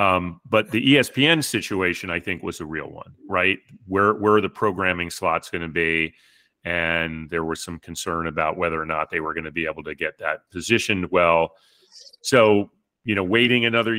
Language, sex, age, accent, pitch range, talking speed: English, male, 40-59, American, 85-105 Hz, 195 wpm